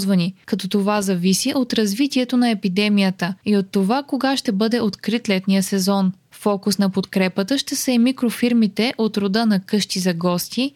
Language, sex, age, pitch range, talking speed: Bulgarian, female, 20-39, 195-240 Hz, 160 wpm